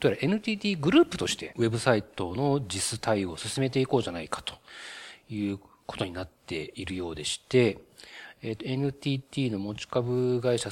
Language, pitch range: Japanese, 95-130 Hz